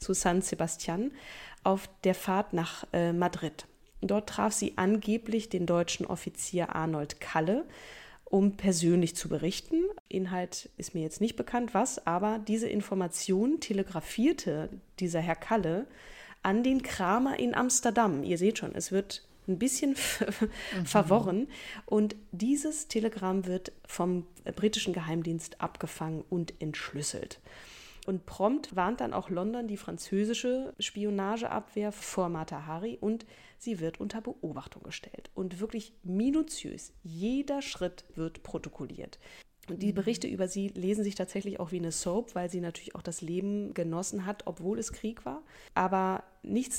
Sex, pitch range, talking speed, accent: female, 180-220 Hz, 140 wpm, German